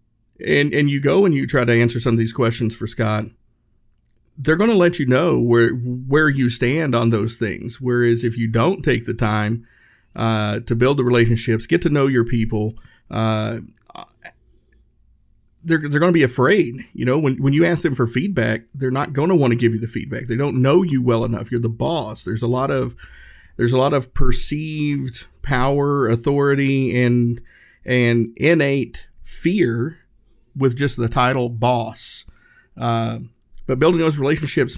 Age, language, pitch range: 50-69, English, 115-135 Hz